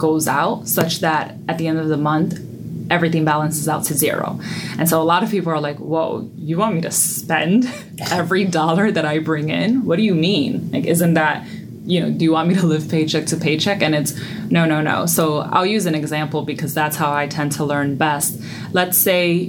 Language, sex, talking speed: English, female, 225 wpm